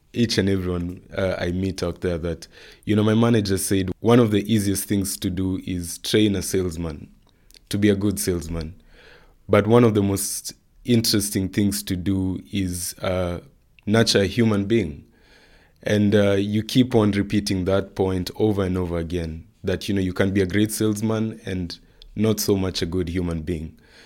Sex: male